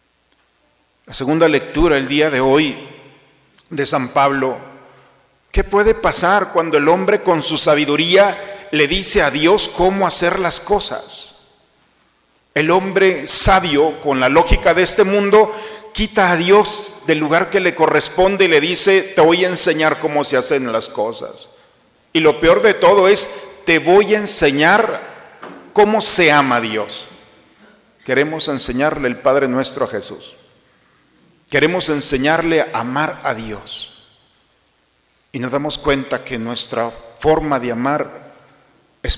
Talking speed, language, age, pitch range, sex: 145 wpm, Spanish, 50-69, 145-195 Hz, male